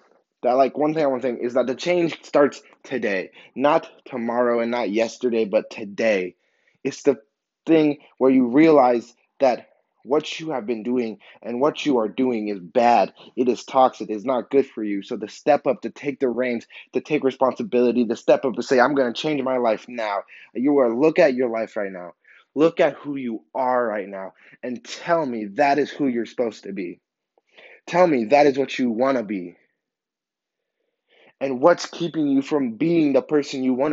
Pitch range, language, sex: 125-170 Hz, English, male